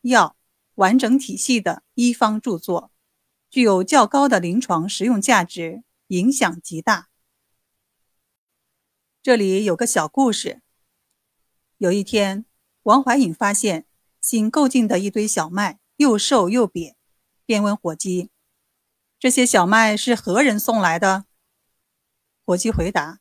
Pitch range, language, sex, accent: 180-250 Hz, Chinese, female, native